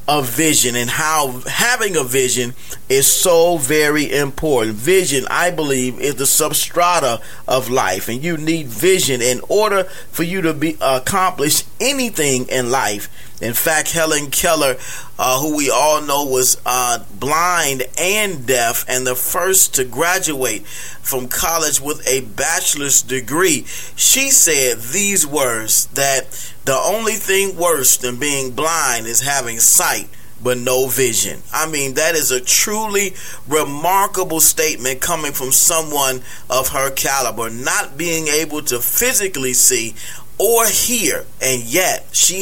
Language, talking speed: English, 145 wpm